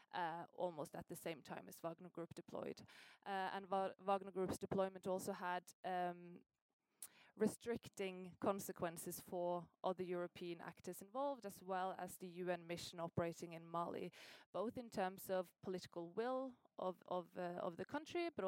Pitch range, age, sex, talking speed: 175-200 Hz, 20-39, female, 145 wpm